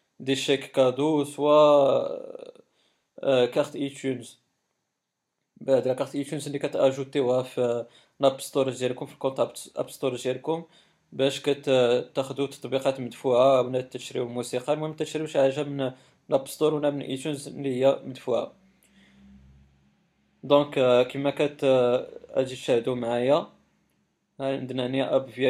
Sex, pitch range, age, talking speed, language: male, 125-145 Hz, 20-39, 125 wpm, Arabic